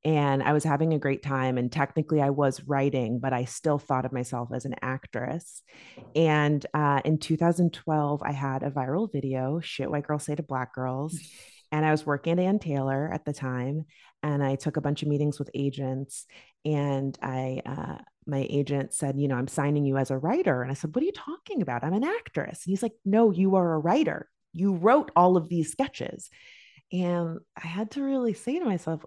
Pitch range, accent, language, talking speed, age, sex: 135-185 Hz, American, English, 215 wpm, 30-49, female